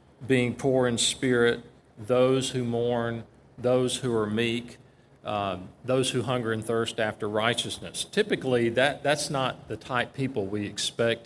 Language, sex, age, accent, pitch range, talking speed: English, male, 40-59, American, 110-140 Hz, 155 wpm